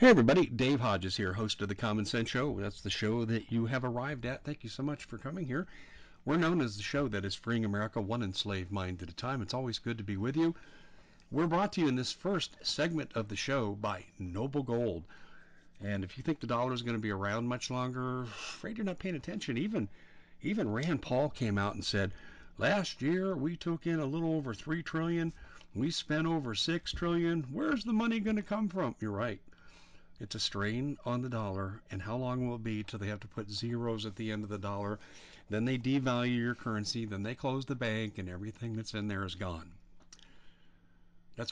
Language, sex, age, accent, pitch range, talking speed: English, male, 50-69, American, 105-135 Hz, 225 wpm